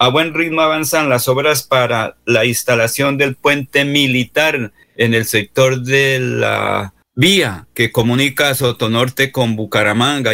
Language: Spanish